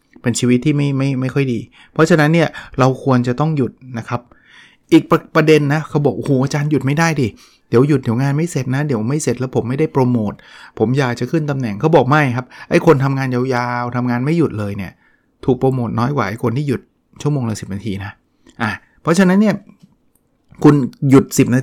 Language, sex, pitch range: English, male, 115-145 Hz